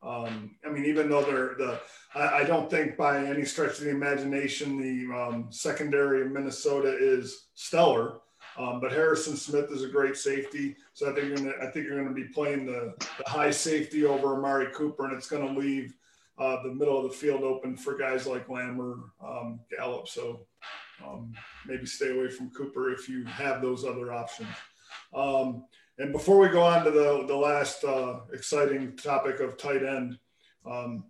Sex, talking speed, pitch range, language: male, 195 wpm, 135-160 Hz, English